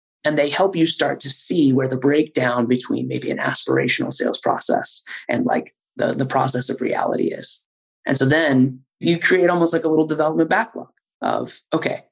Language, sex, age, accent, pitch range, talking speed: English, male, 30-49, American, 135-190 Hz, 185 wpm